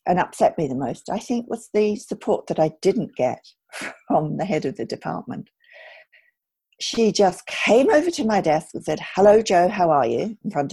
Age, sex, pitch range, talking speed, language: 50-69, female, 150-215 Hz, 200 wpm, English